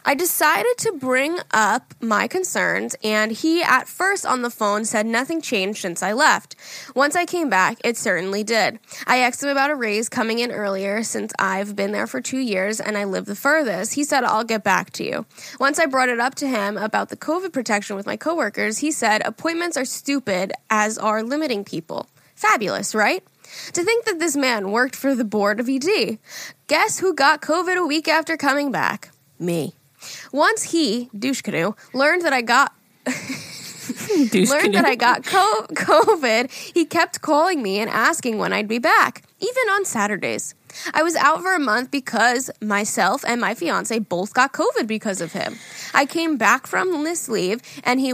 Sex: female